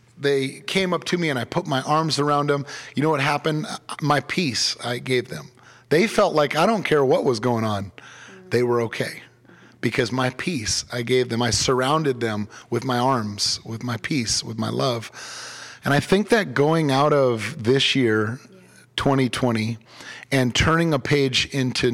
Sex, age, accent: male, 30-49, American